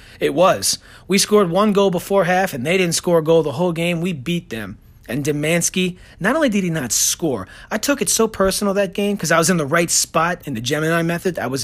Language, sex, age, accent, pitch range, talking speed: English, male, 30-49, American, 145-190 Hz, 245 wpm